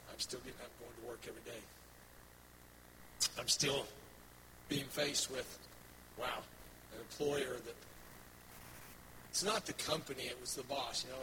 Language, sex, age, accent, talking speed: English, male, 50-69, American, 140 wpm